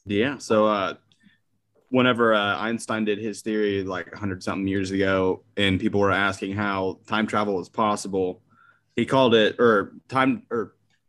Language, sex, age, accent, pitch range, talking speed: English, male, 20-39, American, 100-115 Hz, 155 wpm